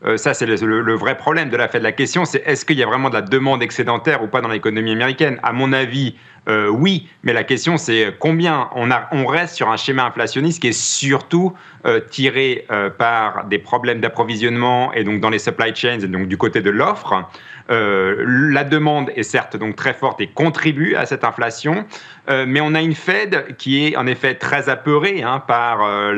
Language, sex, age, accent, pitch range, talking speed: French, male, 40-59, French, 115-155 Hz, 220 wpm